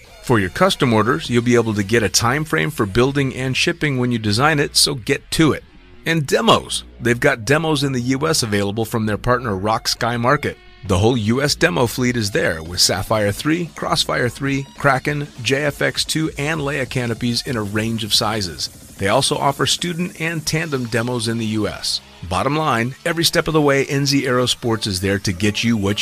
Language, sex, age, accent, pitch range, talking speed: English, male, 30-49, American, 110-140 Hz, 200 wpm